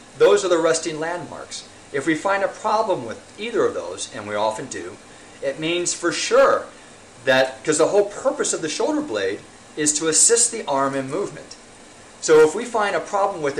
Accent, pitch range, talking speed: American, 140-230 Hz, 200 wpm